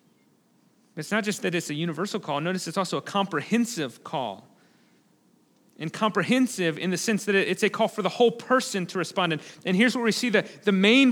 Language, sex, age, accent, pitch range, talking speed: English, male, 30-49, American, 200-245 Hz, 200 wpm